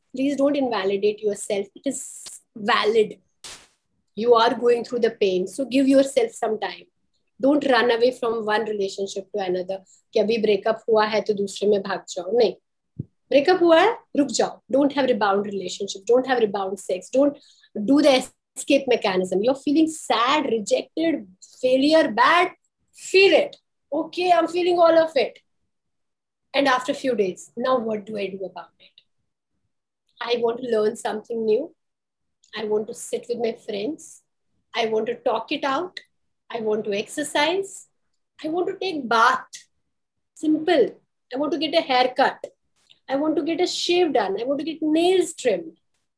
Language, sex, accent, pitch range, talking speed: Hindi, female, native, 215-310 Hz, 170 wpm